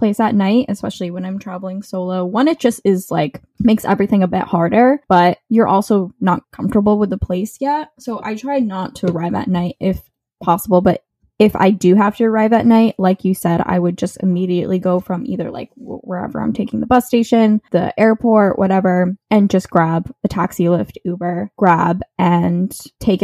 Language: English